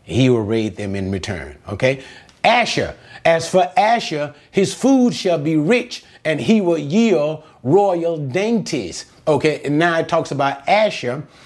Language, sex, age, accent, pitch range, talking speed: English, male, 30-49, American, 125-175 Hz, 150 wpm